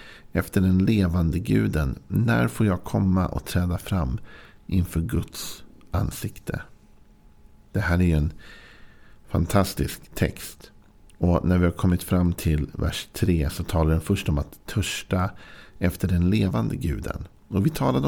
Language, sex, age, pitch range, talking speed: Swedish, male, 50-69, 80-100 Hz, 145 wpm